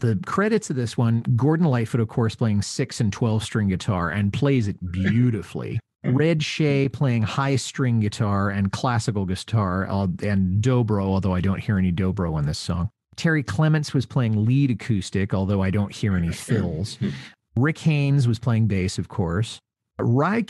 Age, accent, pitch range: 40-59, American, 100-135 Hz